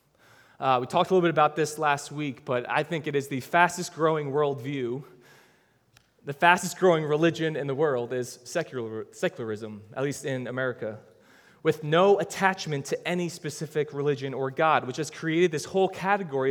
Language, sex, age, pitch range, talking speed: English, male, 20-39, 140-180 Hz, 165 wpm